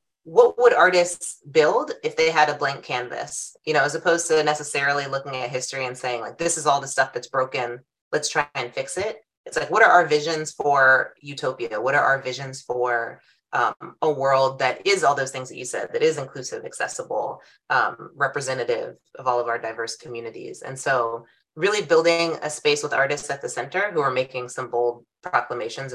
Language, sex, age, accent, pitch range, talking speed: English, female, 30-49, American, 130-175 Hz, 200 wpm